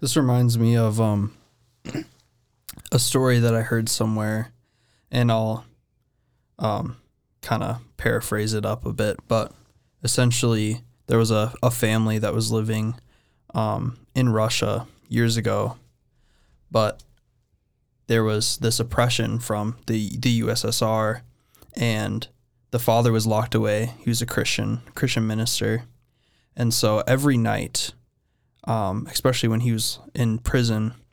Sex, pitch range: male, 110-120 Hz